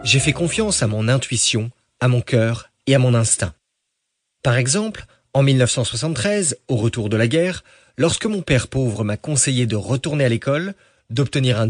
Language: French